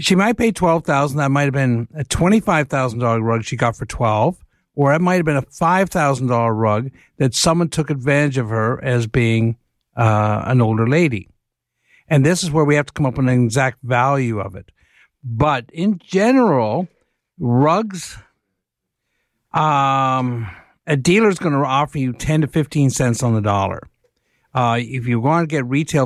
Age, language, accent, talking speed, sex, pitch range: 60-79, English, American, 185 wpm, male, 120-160 Hz